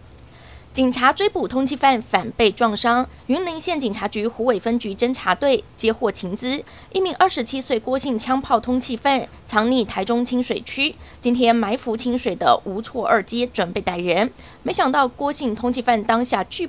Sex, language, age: female, Chinese, 20-39